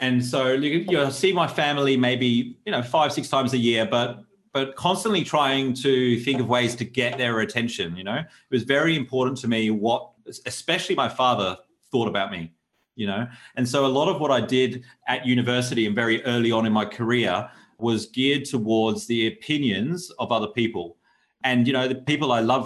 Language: English